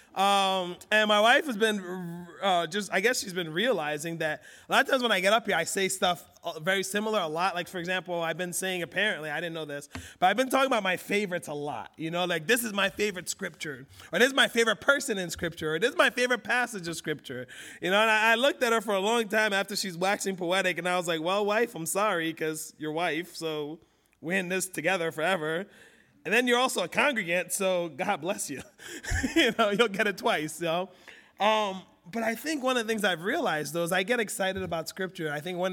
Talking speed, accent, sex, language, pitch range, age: 245 wpm, American, male, English, 170-220 Hz, 30-49